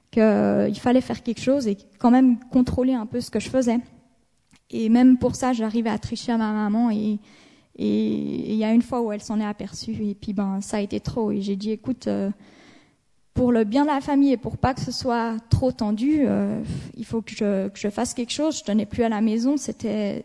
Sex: female